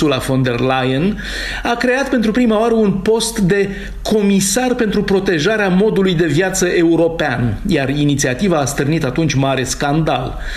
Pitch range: 145-200 Hz